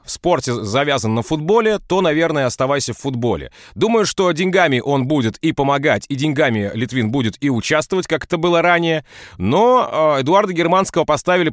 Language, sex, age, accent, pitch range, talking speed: Russian, male, 30-49, native, 130-175 Hz, 165 wpm